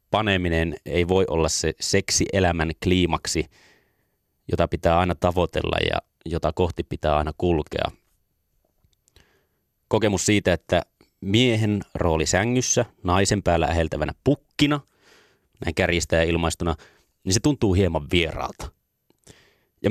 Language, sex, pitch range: Finnish, male, 85-100 Hz